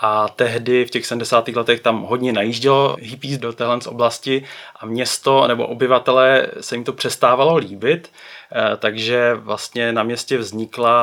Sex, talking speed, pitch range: male, 145 wpm, 115-130 Hz